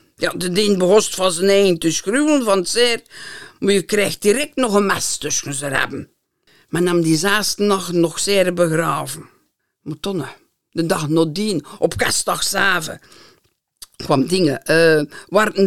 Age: 50-69